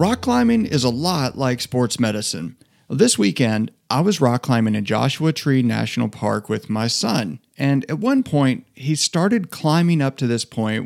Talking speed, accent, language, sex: 180 wpm, American, English, male